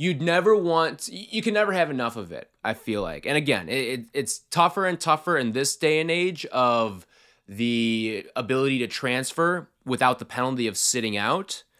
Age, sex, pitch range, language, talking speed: 20-39, male, 125-175 Hz, English, 180 wpm